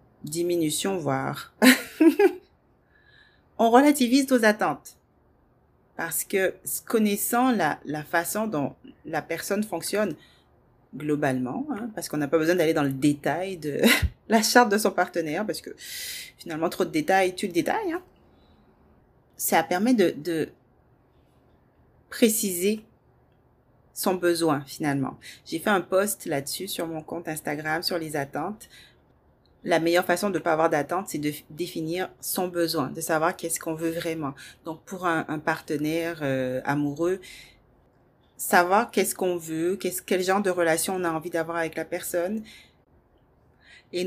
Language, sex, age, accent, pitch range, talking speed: French, female, 30-49, French, 155-195 Hz, 145 wpm